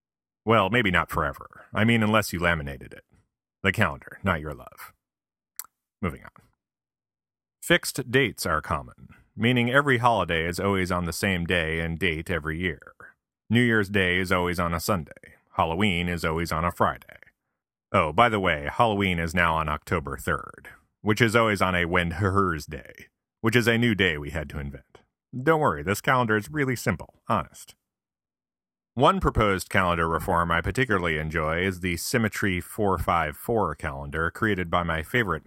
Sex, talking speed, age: male, 165 wpm, 30-49